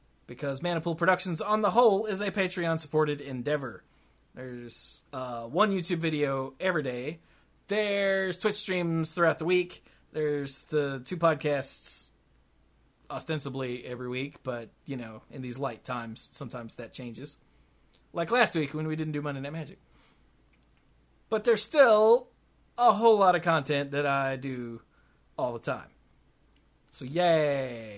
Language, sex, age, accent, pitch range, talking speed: English, male, 30-49, American, 130-185 Hz, 140 wpm